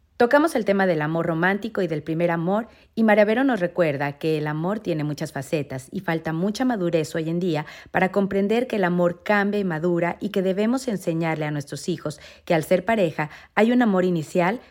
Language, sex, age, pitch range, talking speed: Spanish, female, 40-59, 160-200 Hz, 205 wpm